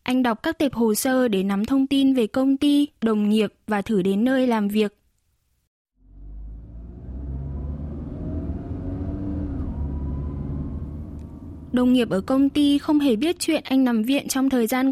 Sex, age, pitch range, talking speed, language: female, 10-29, 215-270 Hz, 145 wpm, Vietnamese